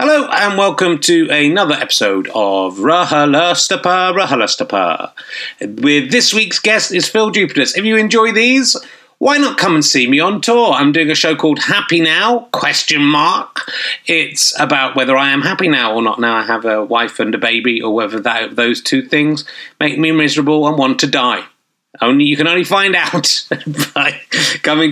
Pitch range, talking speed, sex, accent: 135-180 Hz, 180 wpm, male, British